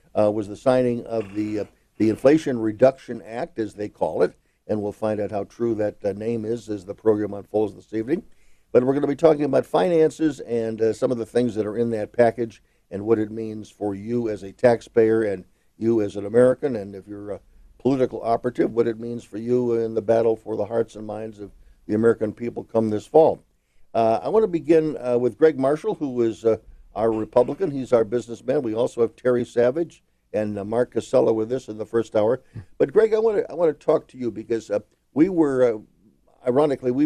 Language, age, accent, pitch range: English, 50-69, American, 105-130 Hz